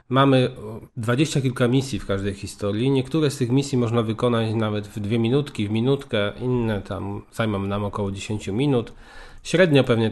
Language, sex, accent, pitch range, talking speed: Polish, male, native, 105-135 Hz, 165 wpm